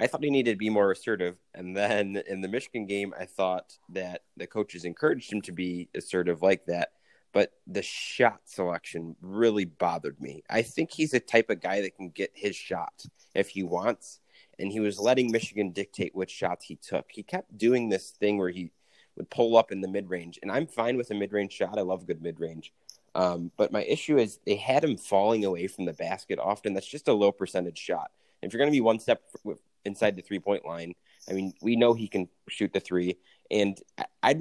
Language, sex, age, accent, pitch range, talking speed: English, male, 30-49, American, 90-115 Hz, 220 wpm